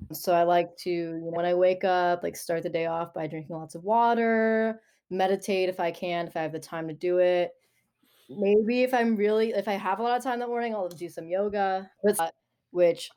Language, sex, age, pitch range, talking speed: English, female, 20-39, 165-200 Hz, 220 wpm